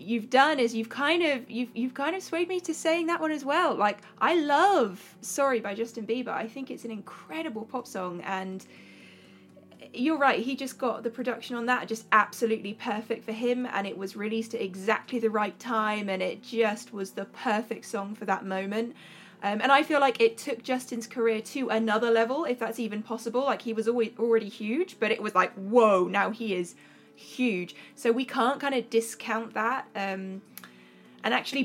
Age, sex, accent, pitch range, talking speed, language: 20-39, female, British, 220-260 Hz, 205 wpm, English